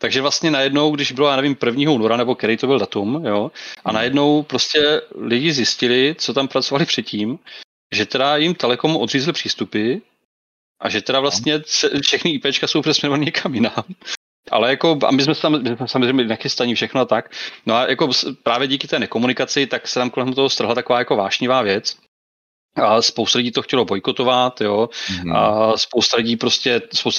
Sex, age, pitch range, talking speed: male, 30-49, 115-140 Hz, 175 wpm